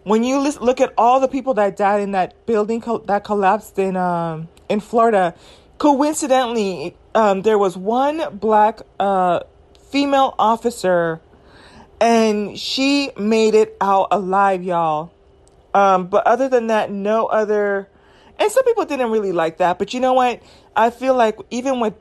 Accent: American